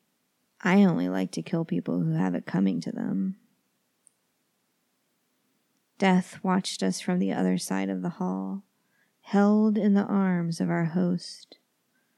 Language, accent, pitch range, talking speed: English, American, 180-220 Hz, 145 wpm